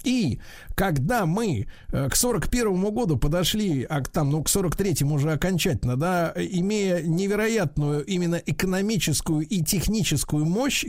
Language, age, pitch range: Russian, 50-69, 140-190 Hz